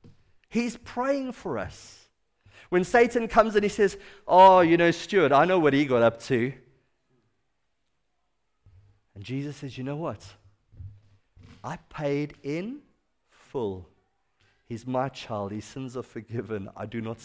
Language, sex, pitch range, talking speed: English, male, 105-160 Hz, 145 wpm